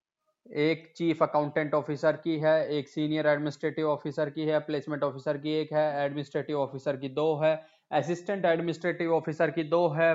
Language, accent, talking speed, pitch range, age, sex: Hindi, native, 165 wpm, 155-170 Hz, 20-39, male